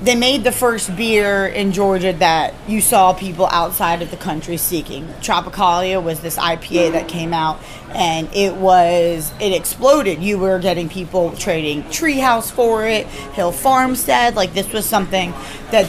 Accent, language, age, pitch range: American, English, 30-49, 175-210 Hz